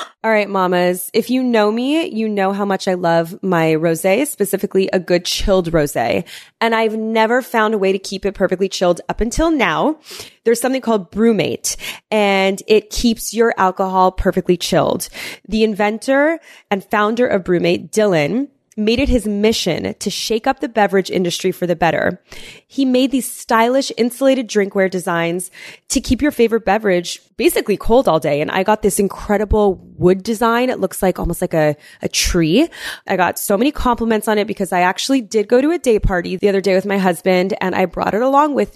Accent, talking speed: American, 190 wpm